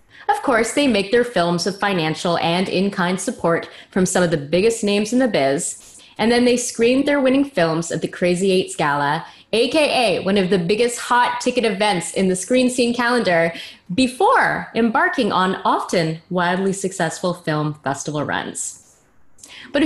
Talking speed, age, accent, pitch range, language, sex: 165 wpm, 20-39, American, 170-260 Hz, English, female